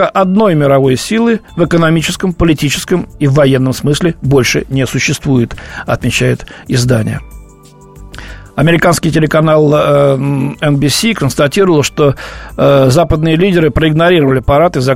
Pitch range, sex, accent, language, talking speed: 135-175 Hz, male, native, Russian, 100 wpm